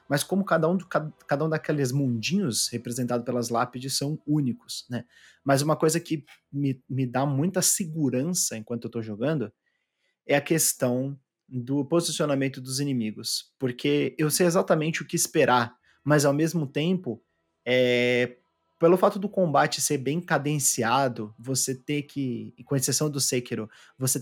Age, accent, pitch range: 20-39, Brazilian, 125-155 Hz